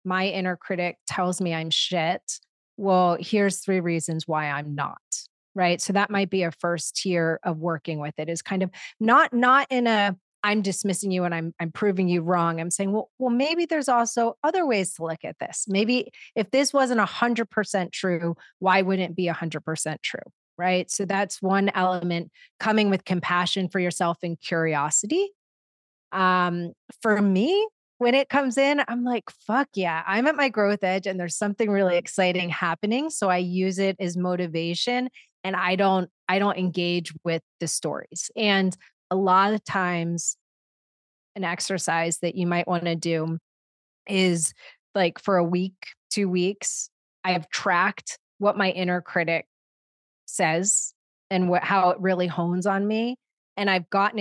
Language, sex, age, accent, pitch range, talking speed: English, female, 30-49, American, 170-205 Hz, 175 wpm